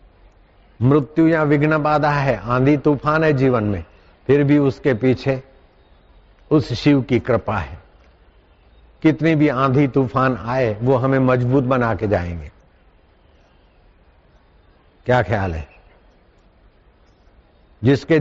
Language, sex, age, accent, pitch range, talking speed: Hindi, male, 60-79, native, 100-155 Hz, 110 wpm